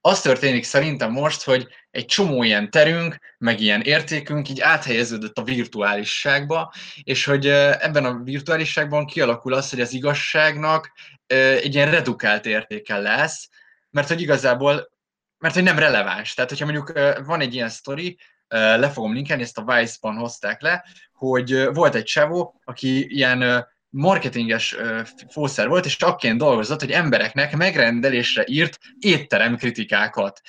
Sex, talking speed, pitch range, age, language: male, 140 wpm, 120-155 Hz, 20-39, Hungarian